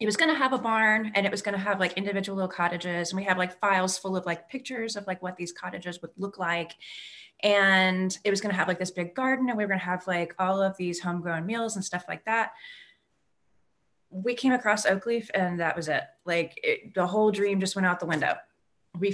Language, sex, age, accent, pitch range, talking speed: English, female, 30-49, American, 180-230 Hz, 245 wpm